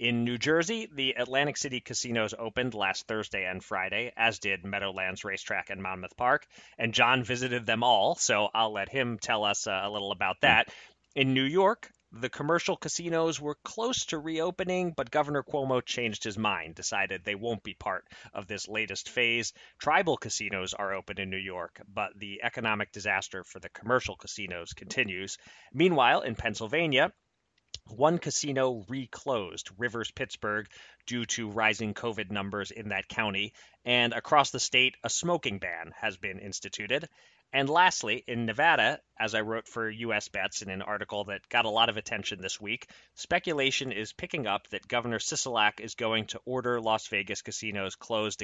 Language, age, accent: English, 30-49, American